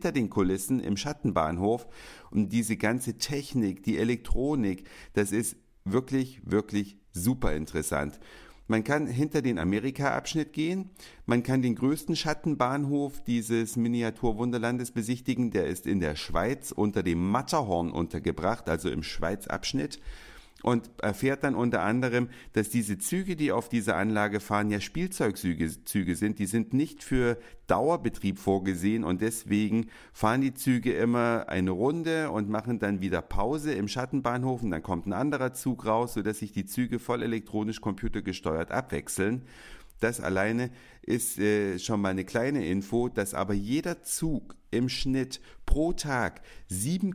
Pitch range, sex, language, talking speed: 100-130 Hz, male, German, 145 wpm